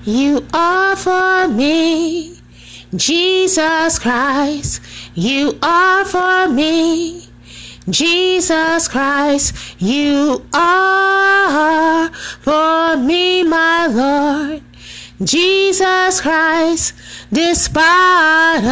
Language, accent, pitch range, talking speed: English, American, 295-365 Hz, 65 wpm